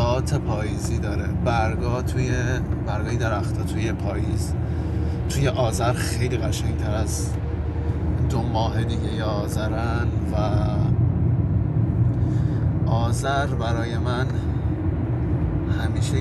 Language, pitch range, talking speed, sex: Persian, 100-115 Hz, 80 wpm, male